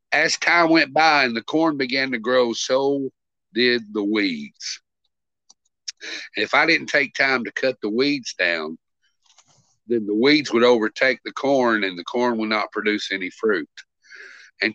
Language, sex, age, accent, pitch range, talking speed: English, male, 50-69, American, 105-130 Hz, 165 wpm